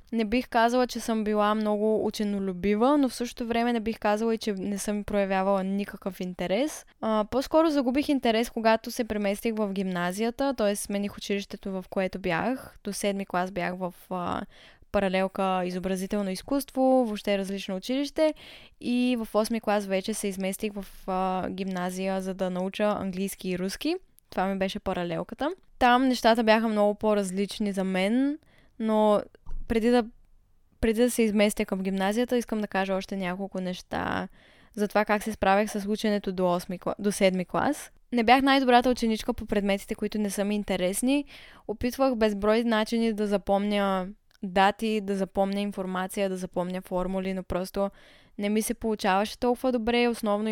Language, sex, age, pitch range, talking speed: Bulgarian, female, 20-39, 195-230 Hz, 160 wpm